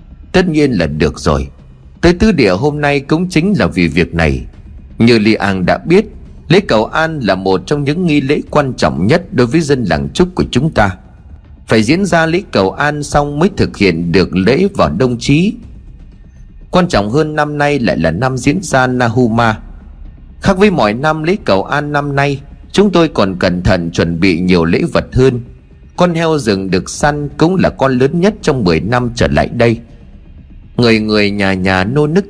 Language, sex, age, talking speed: Vietnamese, male, 30-49, 205 wpm